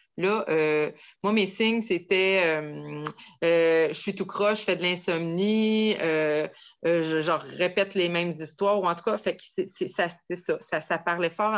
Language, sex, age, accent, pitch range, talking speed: French, female, 30-49, Canadian, 190-245 Hz, 210 wpm